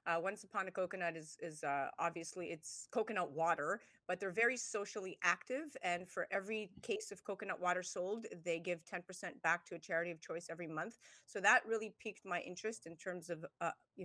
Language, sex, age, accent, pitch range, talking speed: English, female, 30-49, American, 170-220 Hz, 200 wpm